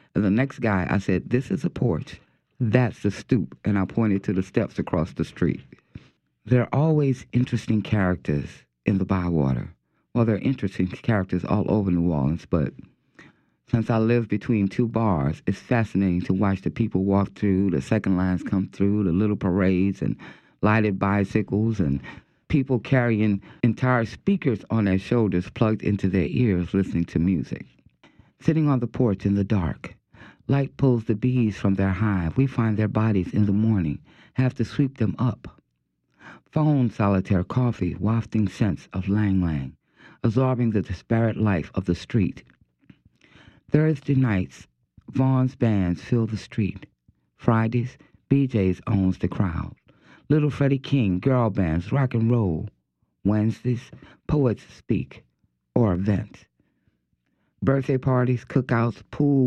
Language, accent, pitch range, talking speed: English, American, 95-125 Hz, 150 wpm